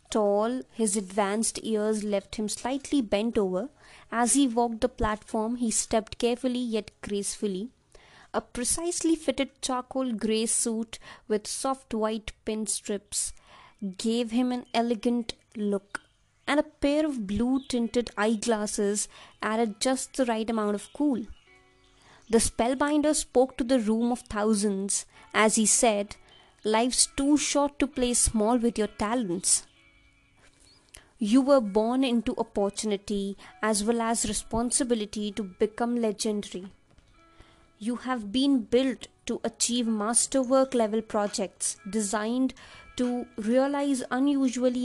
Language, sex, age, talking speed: English, female, 20-39, 125 wpm